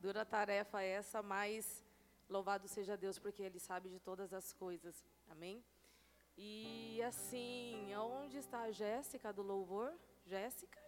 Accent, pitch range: Brazilian, 205-270 Hz